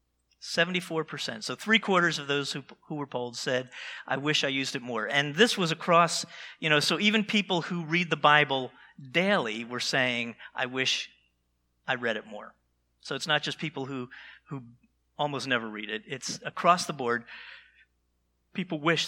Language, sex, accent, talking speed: English, male, American, 170 wpm